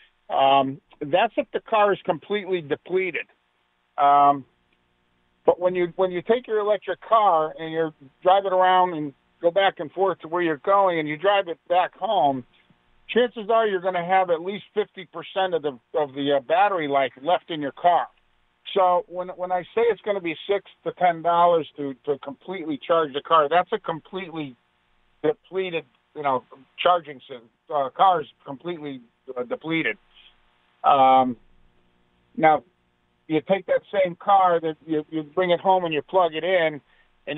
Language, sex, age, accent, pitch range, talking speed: English, male, 50-69, American, 130-180 Hz, 175 wpm